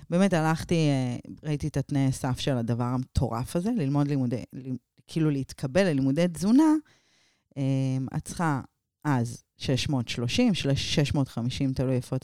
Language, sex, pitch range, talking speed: Hebrew, female, 130-170 Hz, 120 wpm